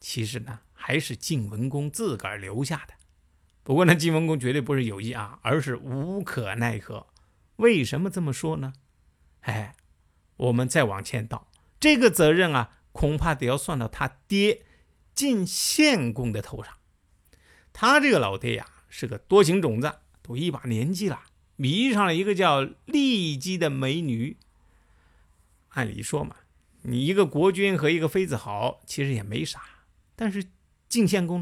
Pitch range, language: 115-185 Hz, Chinese